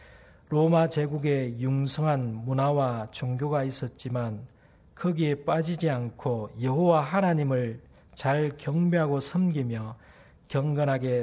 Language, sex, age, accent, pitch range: Korean, male, 40-59, native, 115-155 Hz